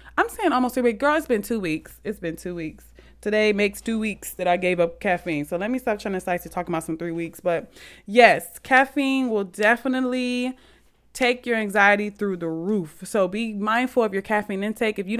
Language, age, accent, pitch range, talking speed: English, 20-39, American, 180-240 Hz, 215 wpm